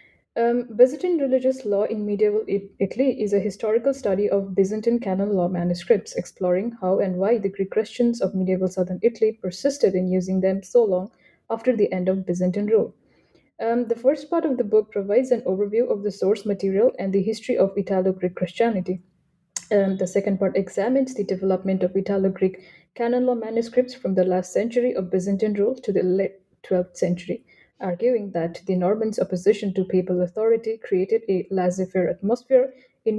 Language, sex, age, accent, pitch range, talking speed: English, female, 10-29, Indian, 185-235 Hz, 175 wpm